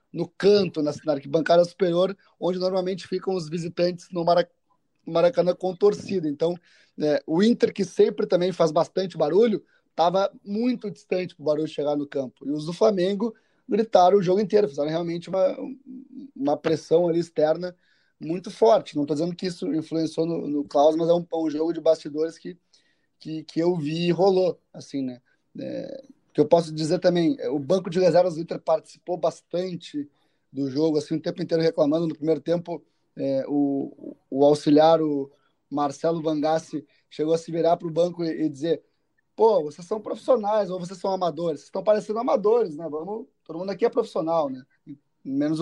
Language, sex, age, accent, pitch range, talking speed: Portuguese, male, 20-39, Brazilian, 155-190 Hz, 180 wpm